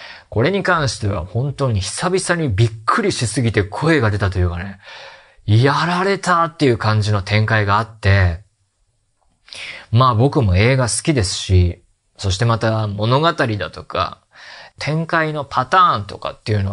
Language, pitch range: Japanese, 105-155 Hz